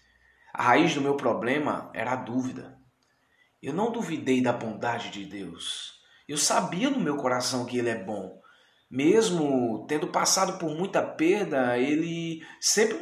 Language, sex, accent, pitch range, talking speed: Portuguese, male, Brazilian, 100-150 Hz, 145 wpm